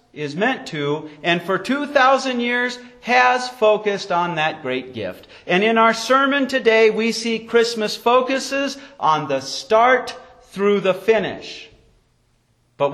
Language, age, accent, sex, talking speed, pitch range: English, 40-59, American, male, 135 wpm, 170-255 Hz